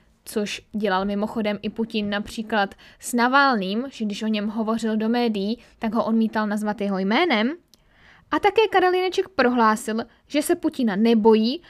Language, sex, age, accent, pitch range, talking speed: Czech, female, 10-29, native, 210-255 Hz, 150 wpm